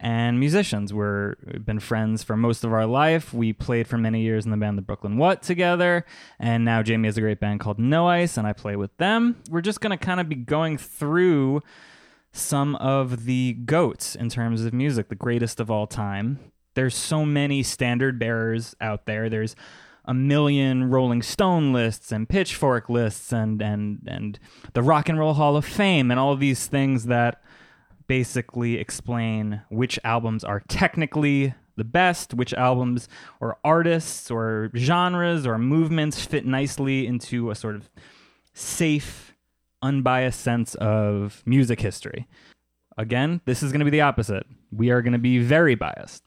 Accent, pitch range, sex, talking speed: American, 110-145 Hz, male, 175 wpm